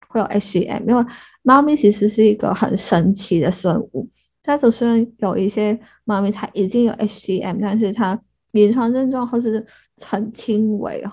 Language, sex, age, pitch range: Chinese, female, 20-39, 190-225 Hz